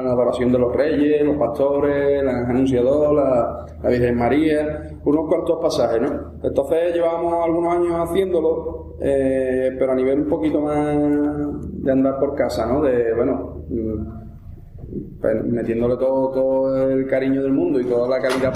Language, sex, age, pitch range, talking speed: Spanish, male, 20-39, 120-145 Hz, 155 wpm